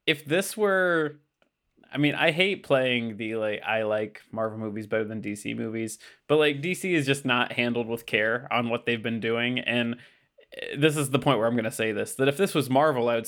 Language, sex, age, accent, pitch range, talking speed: English, male, 20-39, American, 120-165 Hz, 225 wpm